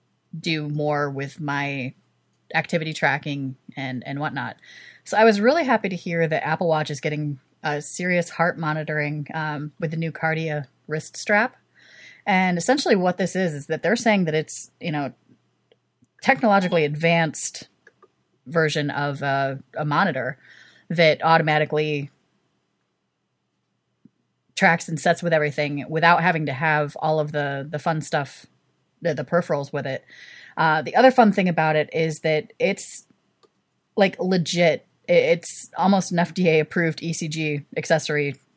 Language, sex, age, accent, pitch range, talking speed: English, female, 30-49, American, 145-175 Hz, 145 wpm